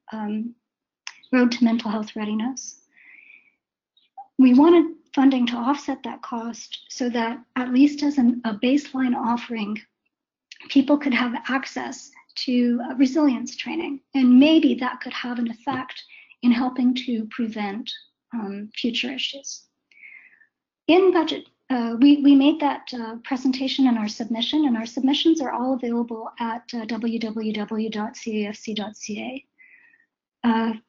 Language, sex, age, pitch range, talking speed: English, male, 50-69, 230-275 Hz, 125 wpm